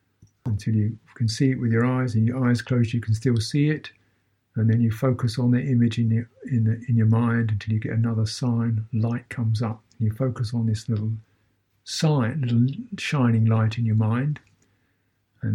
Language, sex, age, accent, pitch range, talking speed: English, male, 50-69, British, 110-130 Hz, 205 wpm